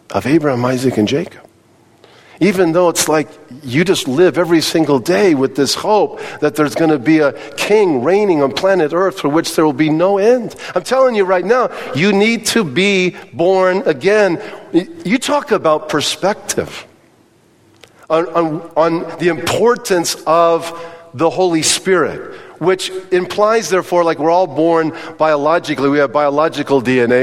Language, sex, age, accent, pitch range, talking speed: English, male, 50-69, American, 155-190 Hz, 155 wpm